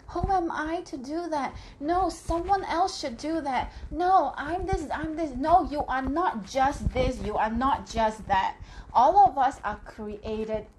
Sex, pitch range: female, 220-305 Hz